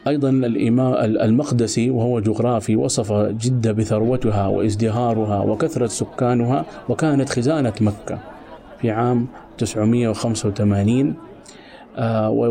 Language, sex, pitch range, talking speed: Arabic, male, 110-130 Hz, 80 wpm